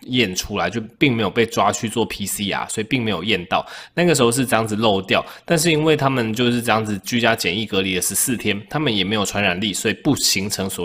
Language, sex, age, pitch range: Chinese, male, 20-39, 100-135 Hz